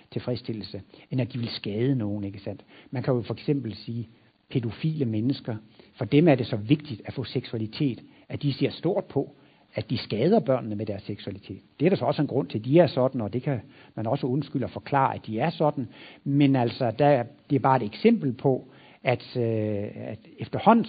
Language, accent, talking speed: Danish, native, 215 wpm